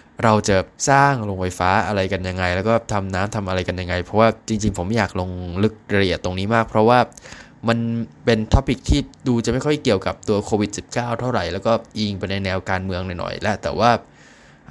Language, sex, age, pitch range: Thai, male, 20-39, 95-115 Hz